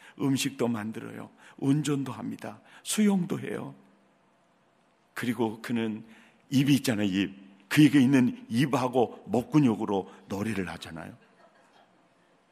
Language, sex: Korean, male